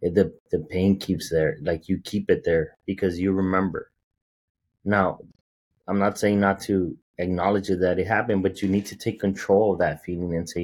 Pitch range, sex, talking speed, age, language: 85-100 Hz, male, 190 wpm, 30-49, English